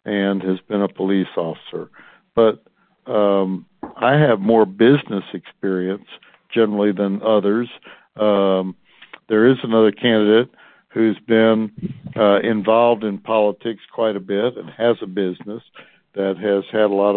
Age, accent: 60-79, American